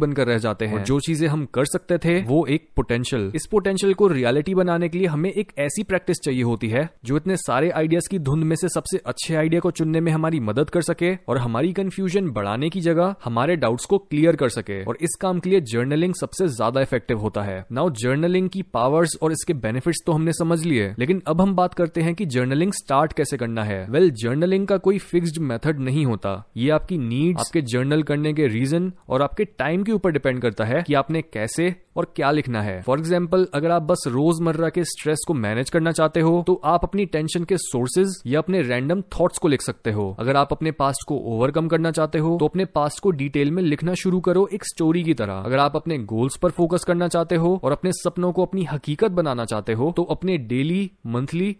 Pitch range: 135-175 Hz